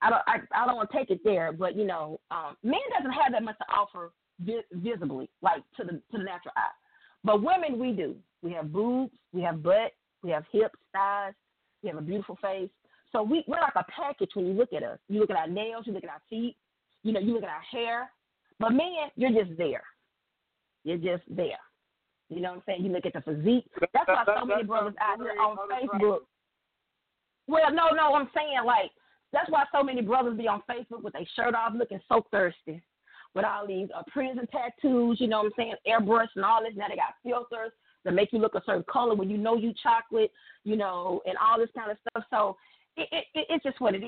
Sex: female